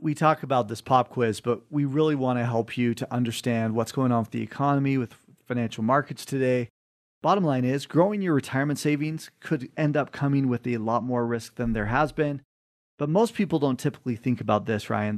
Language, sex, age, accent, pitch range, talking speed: English, male, 40-59, American, 125-155 Hz, 215 wpm